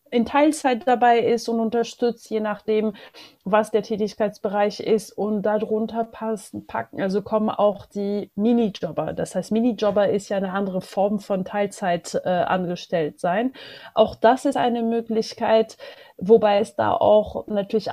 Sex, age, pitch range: female, 30-49, 205-240 Hz